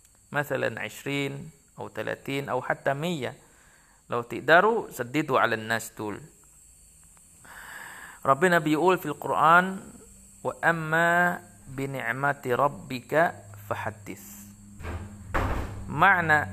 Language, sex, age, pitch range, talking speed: Arabic, male, 50-69, 110-155 Hz, 80 wpm